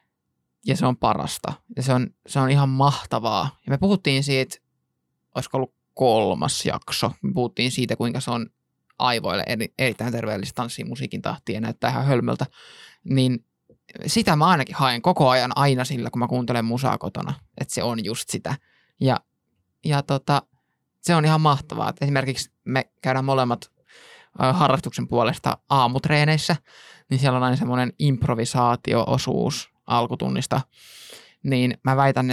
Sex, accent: male, native